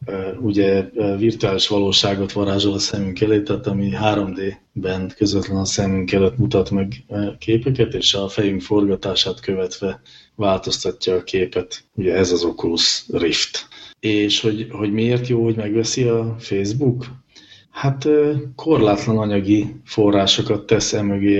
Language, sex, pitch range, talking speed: English, male, 100-115 Hz, 125 wpm